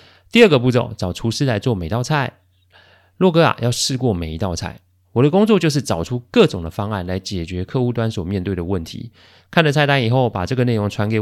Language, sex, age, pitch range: Chinese, male, 30-49, 95-125 Hz